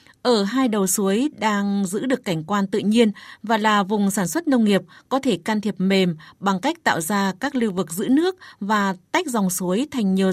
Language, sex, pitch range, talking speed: Vietnamese, female, 195-245 Hz, 220 wpm